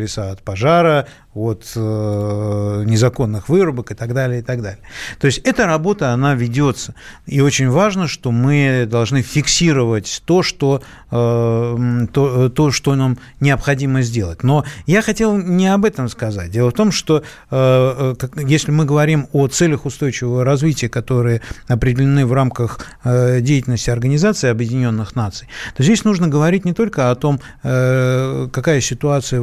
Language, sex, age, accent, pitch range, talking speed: Russian, male, 50-69, native, 115-145 Hz, 150 wpm